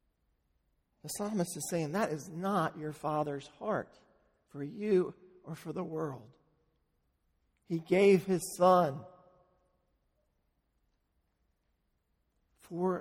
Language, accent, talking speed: English, American, 95 wpm